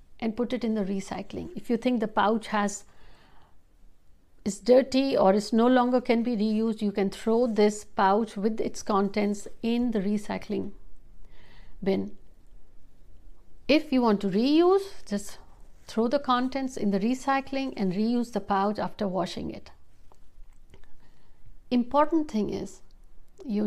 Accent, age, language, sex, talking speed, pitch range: native, 60-79, Hindi, female, 140 wpm, 195-245 Hz